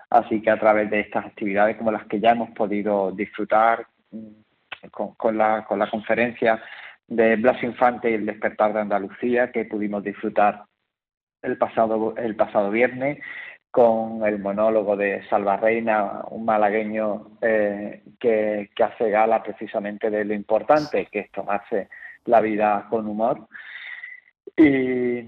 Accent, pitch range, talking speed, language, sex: Spanish, 105-115 Hz, 145 wpm, Spanish, male